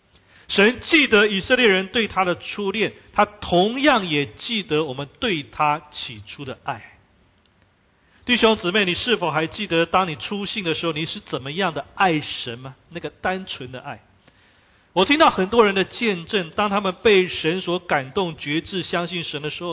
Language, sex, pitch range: Chinese, male, 130-200 Hz